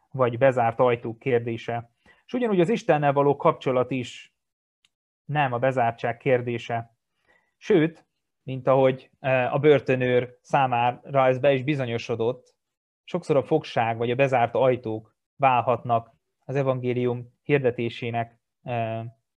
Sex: male